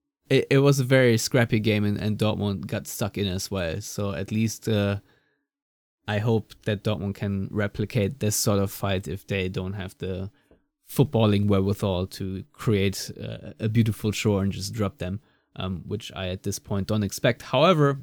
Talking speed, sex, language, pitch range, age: 175 wpm, male, English, 100-130 Hz, 20-39